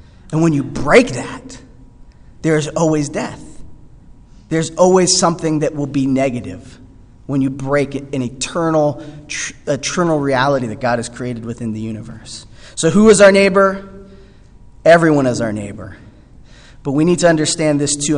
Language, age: English, 20-39